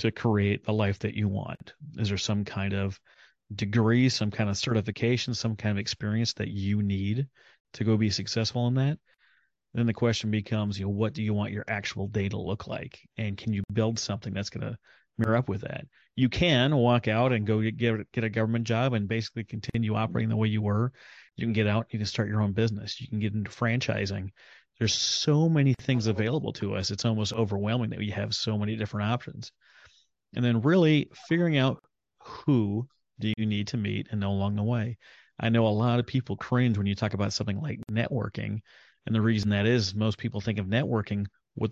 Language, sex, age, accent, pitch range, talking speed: English, male, 30-49, American, 105-120 Hz, 215 wpm